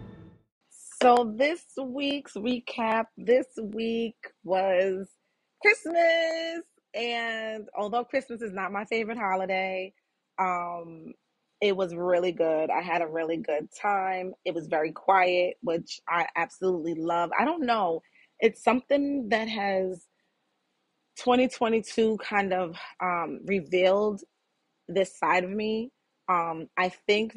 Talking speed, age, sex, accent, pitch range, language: 120 wpm, 30-49, female, American, 175-225 Hz, English